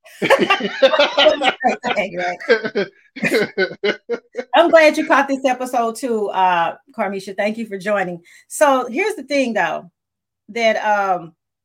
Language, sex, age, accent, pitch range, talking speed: English, female, 30-49, American, 195-260 Hz, 105 wpm